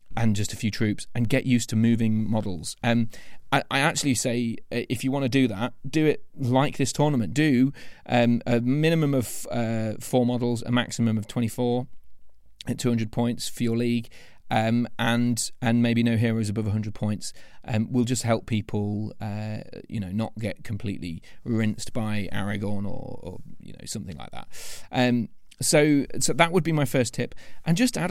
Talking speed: 185 wpm